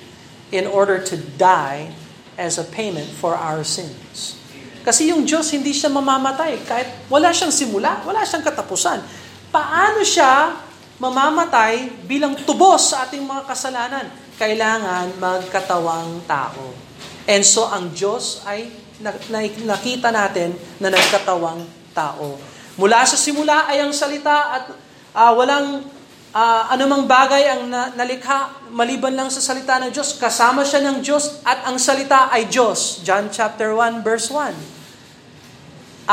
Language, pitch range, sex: Filipino, 185-265 Hz, male